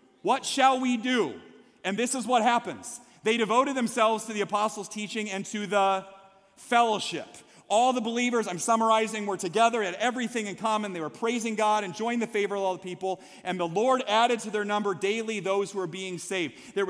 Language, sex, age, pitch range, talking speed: English, male, 30-49, 190-245 Hz, 200 wpm